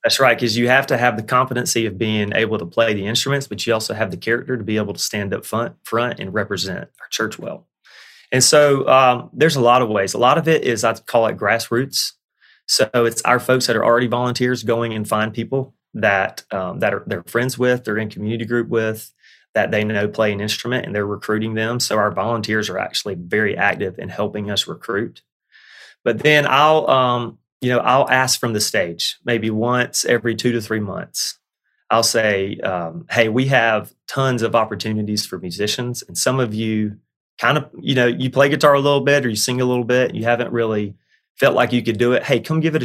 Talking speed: 225 wpm